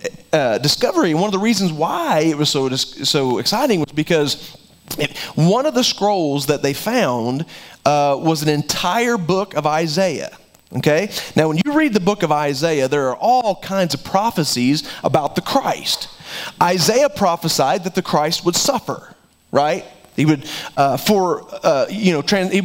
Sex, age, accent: male, 30-49, American